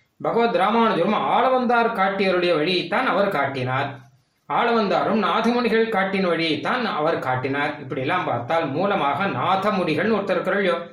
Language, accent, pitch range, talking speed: Tamil, native, 140-205 Hz, 115 wpm